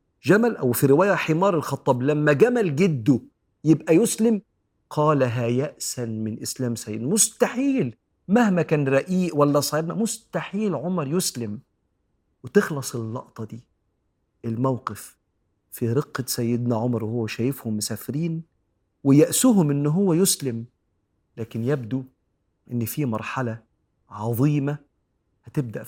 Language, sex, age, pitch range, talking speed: Arabic, male, 50-69, 110-150 Hz, 110 wpm